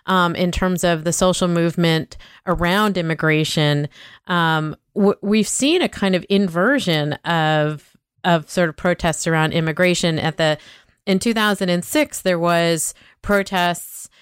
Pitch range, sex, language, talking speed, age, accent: 155-180 Hz, female, English, 130 wpm, 30-49, American